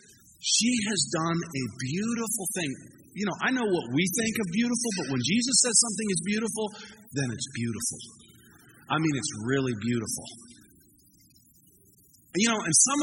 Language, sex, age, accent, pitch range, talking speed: English, male, 30-49, American, 135-190 Hz, 155 wpm